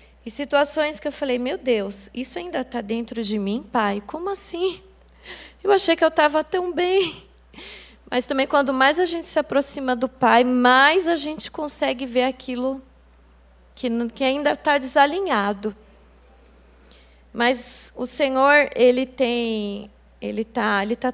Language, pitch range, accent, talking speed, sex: Portuguese, 220-280 Hz, Brazilian, 150 wpm, female